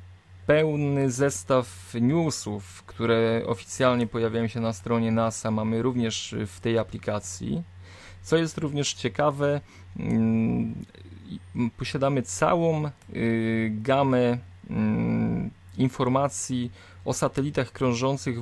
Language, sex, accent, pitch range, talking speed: Polish, male, native, 105-130 Hz, 85 wpm